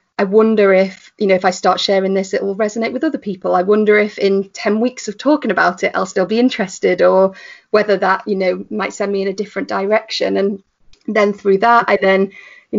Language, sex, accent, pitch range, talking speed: English, female, British, 195-230 Hz, 230 wpm